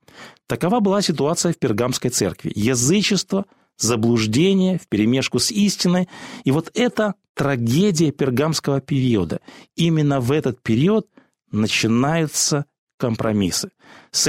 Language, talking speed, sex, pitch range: Russian, 100 wpm, male, 120-175 Hz